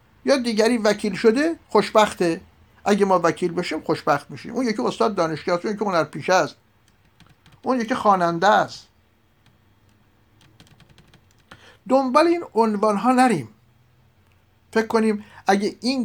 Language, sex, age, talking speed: Persian, male, 50-69, 130 wpm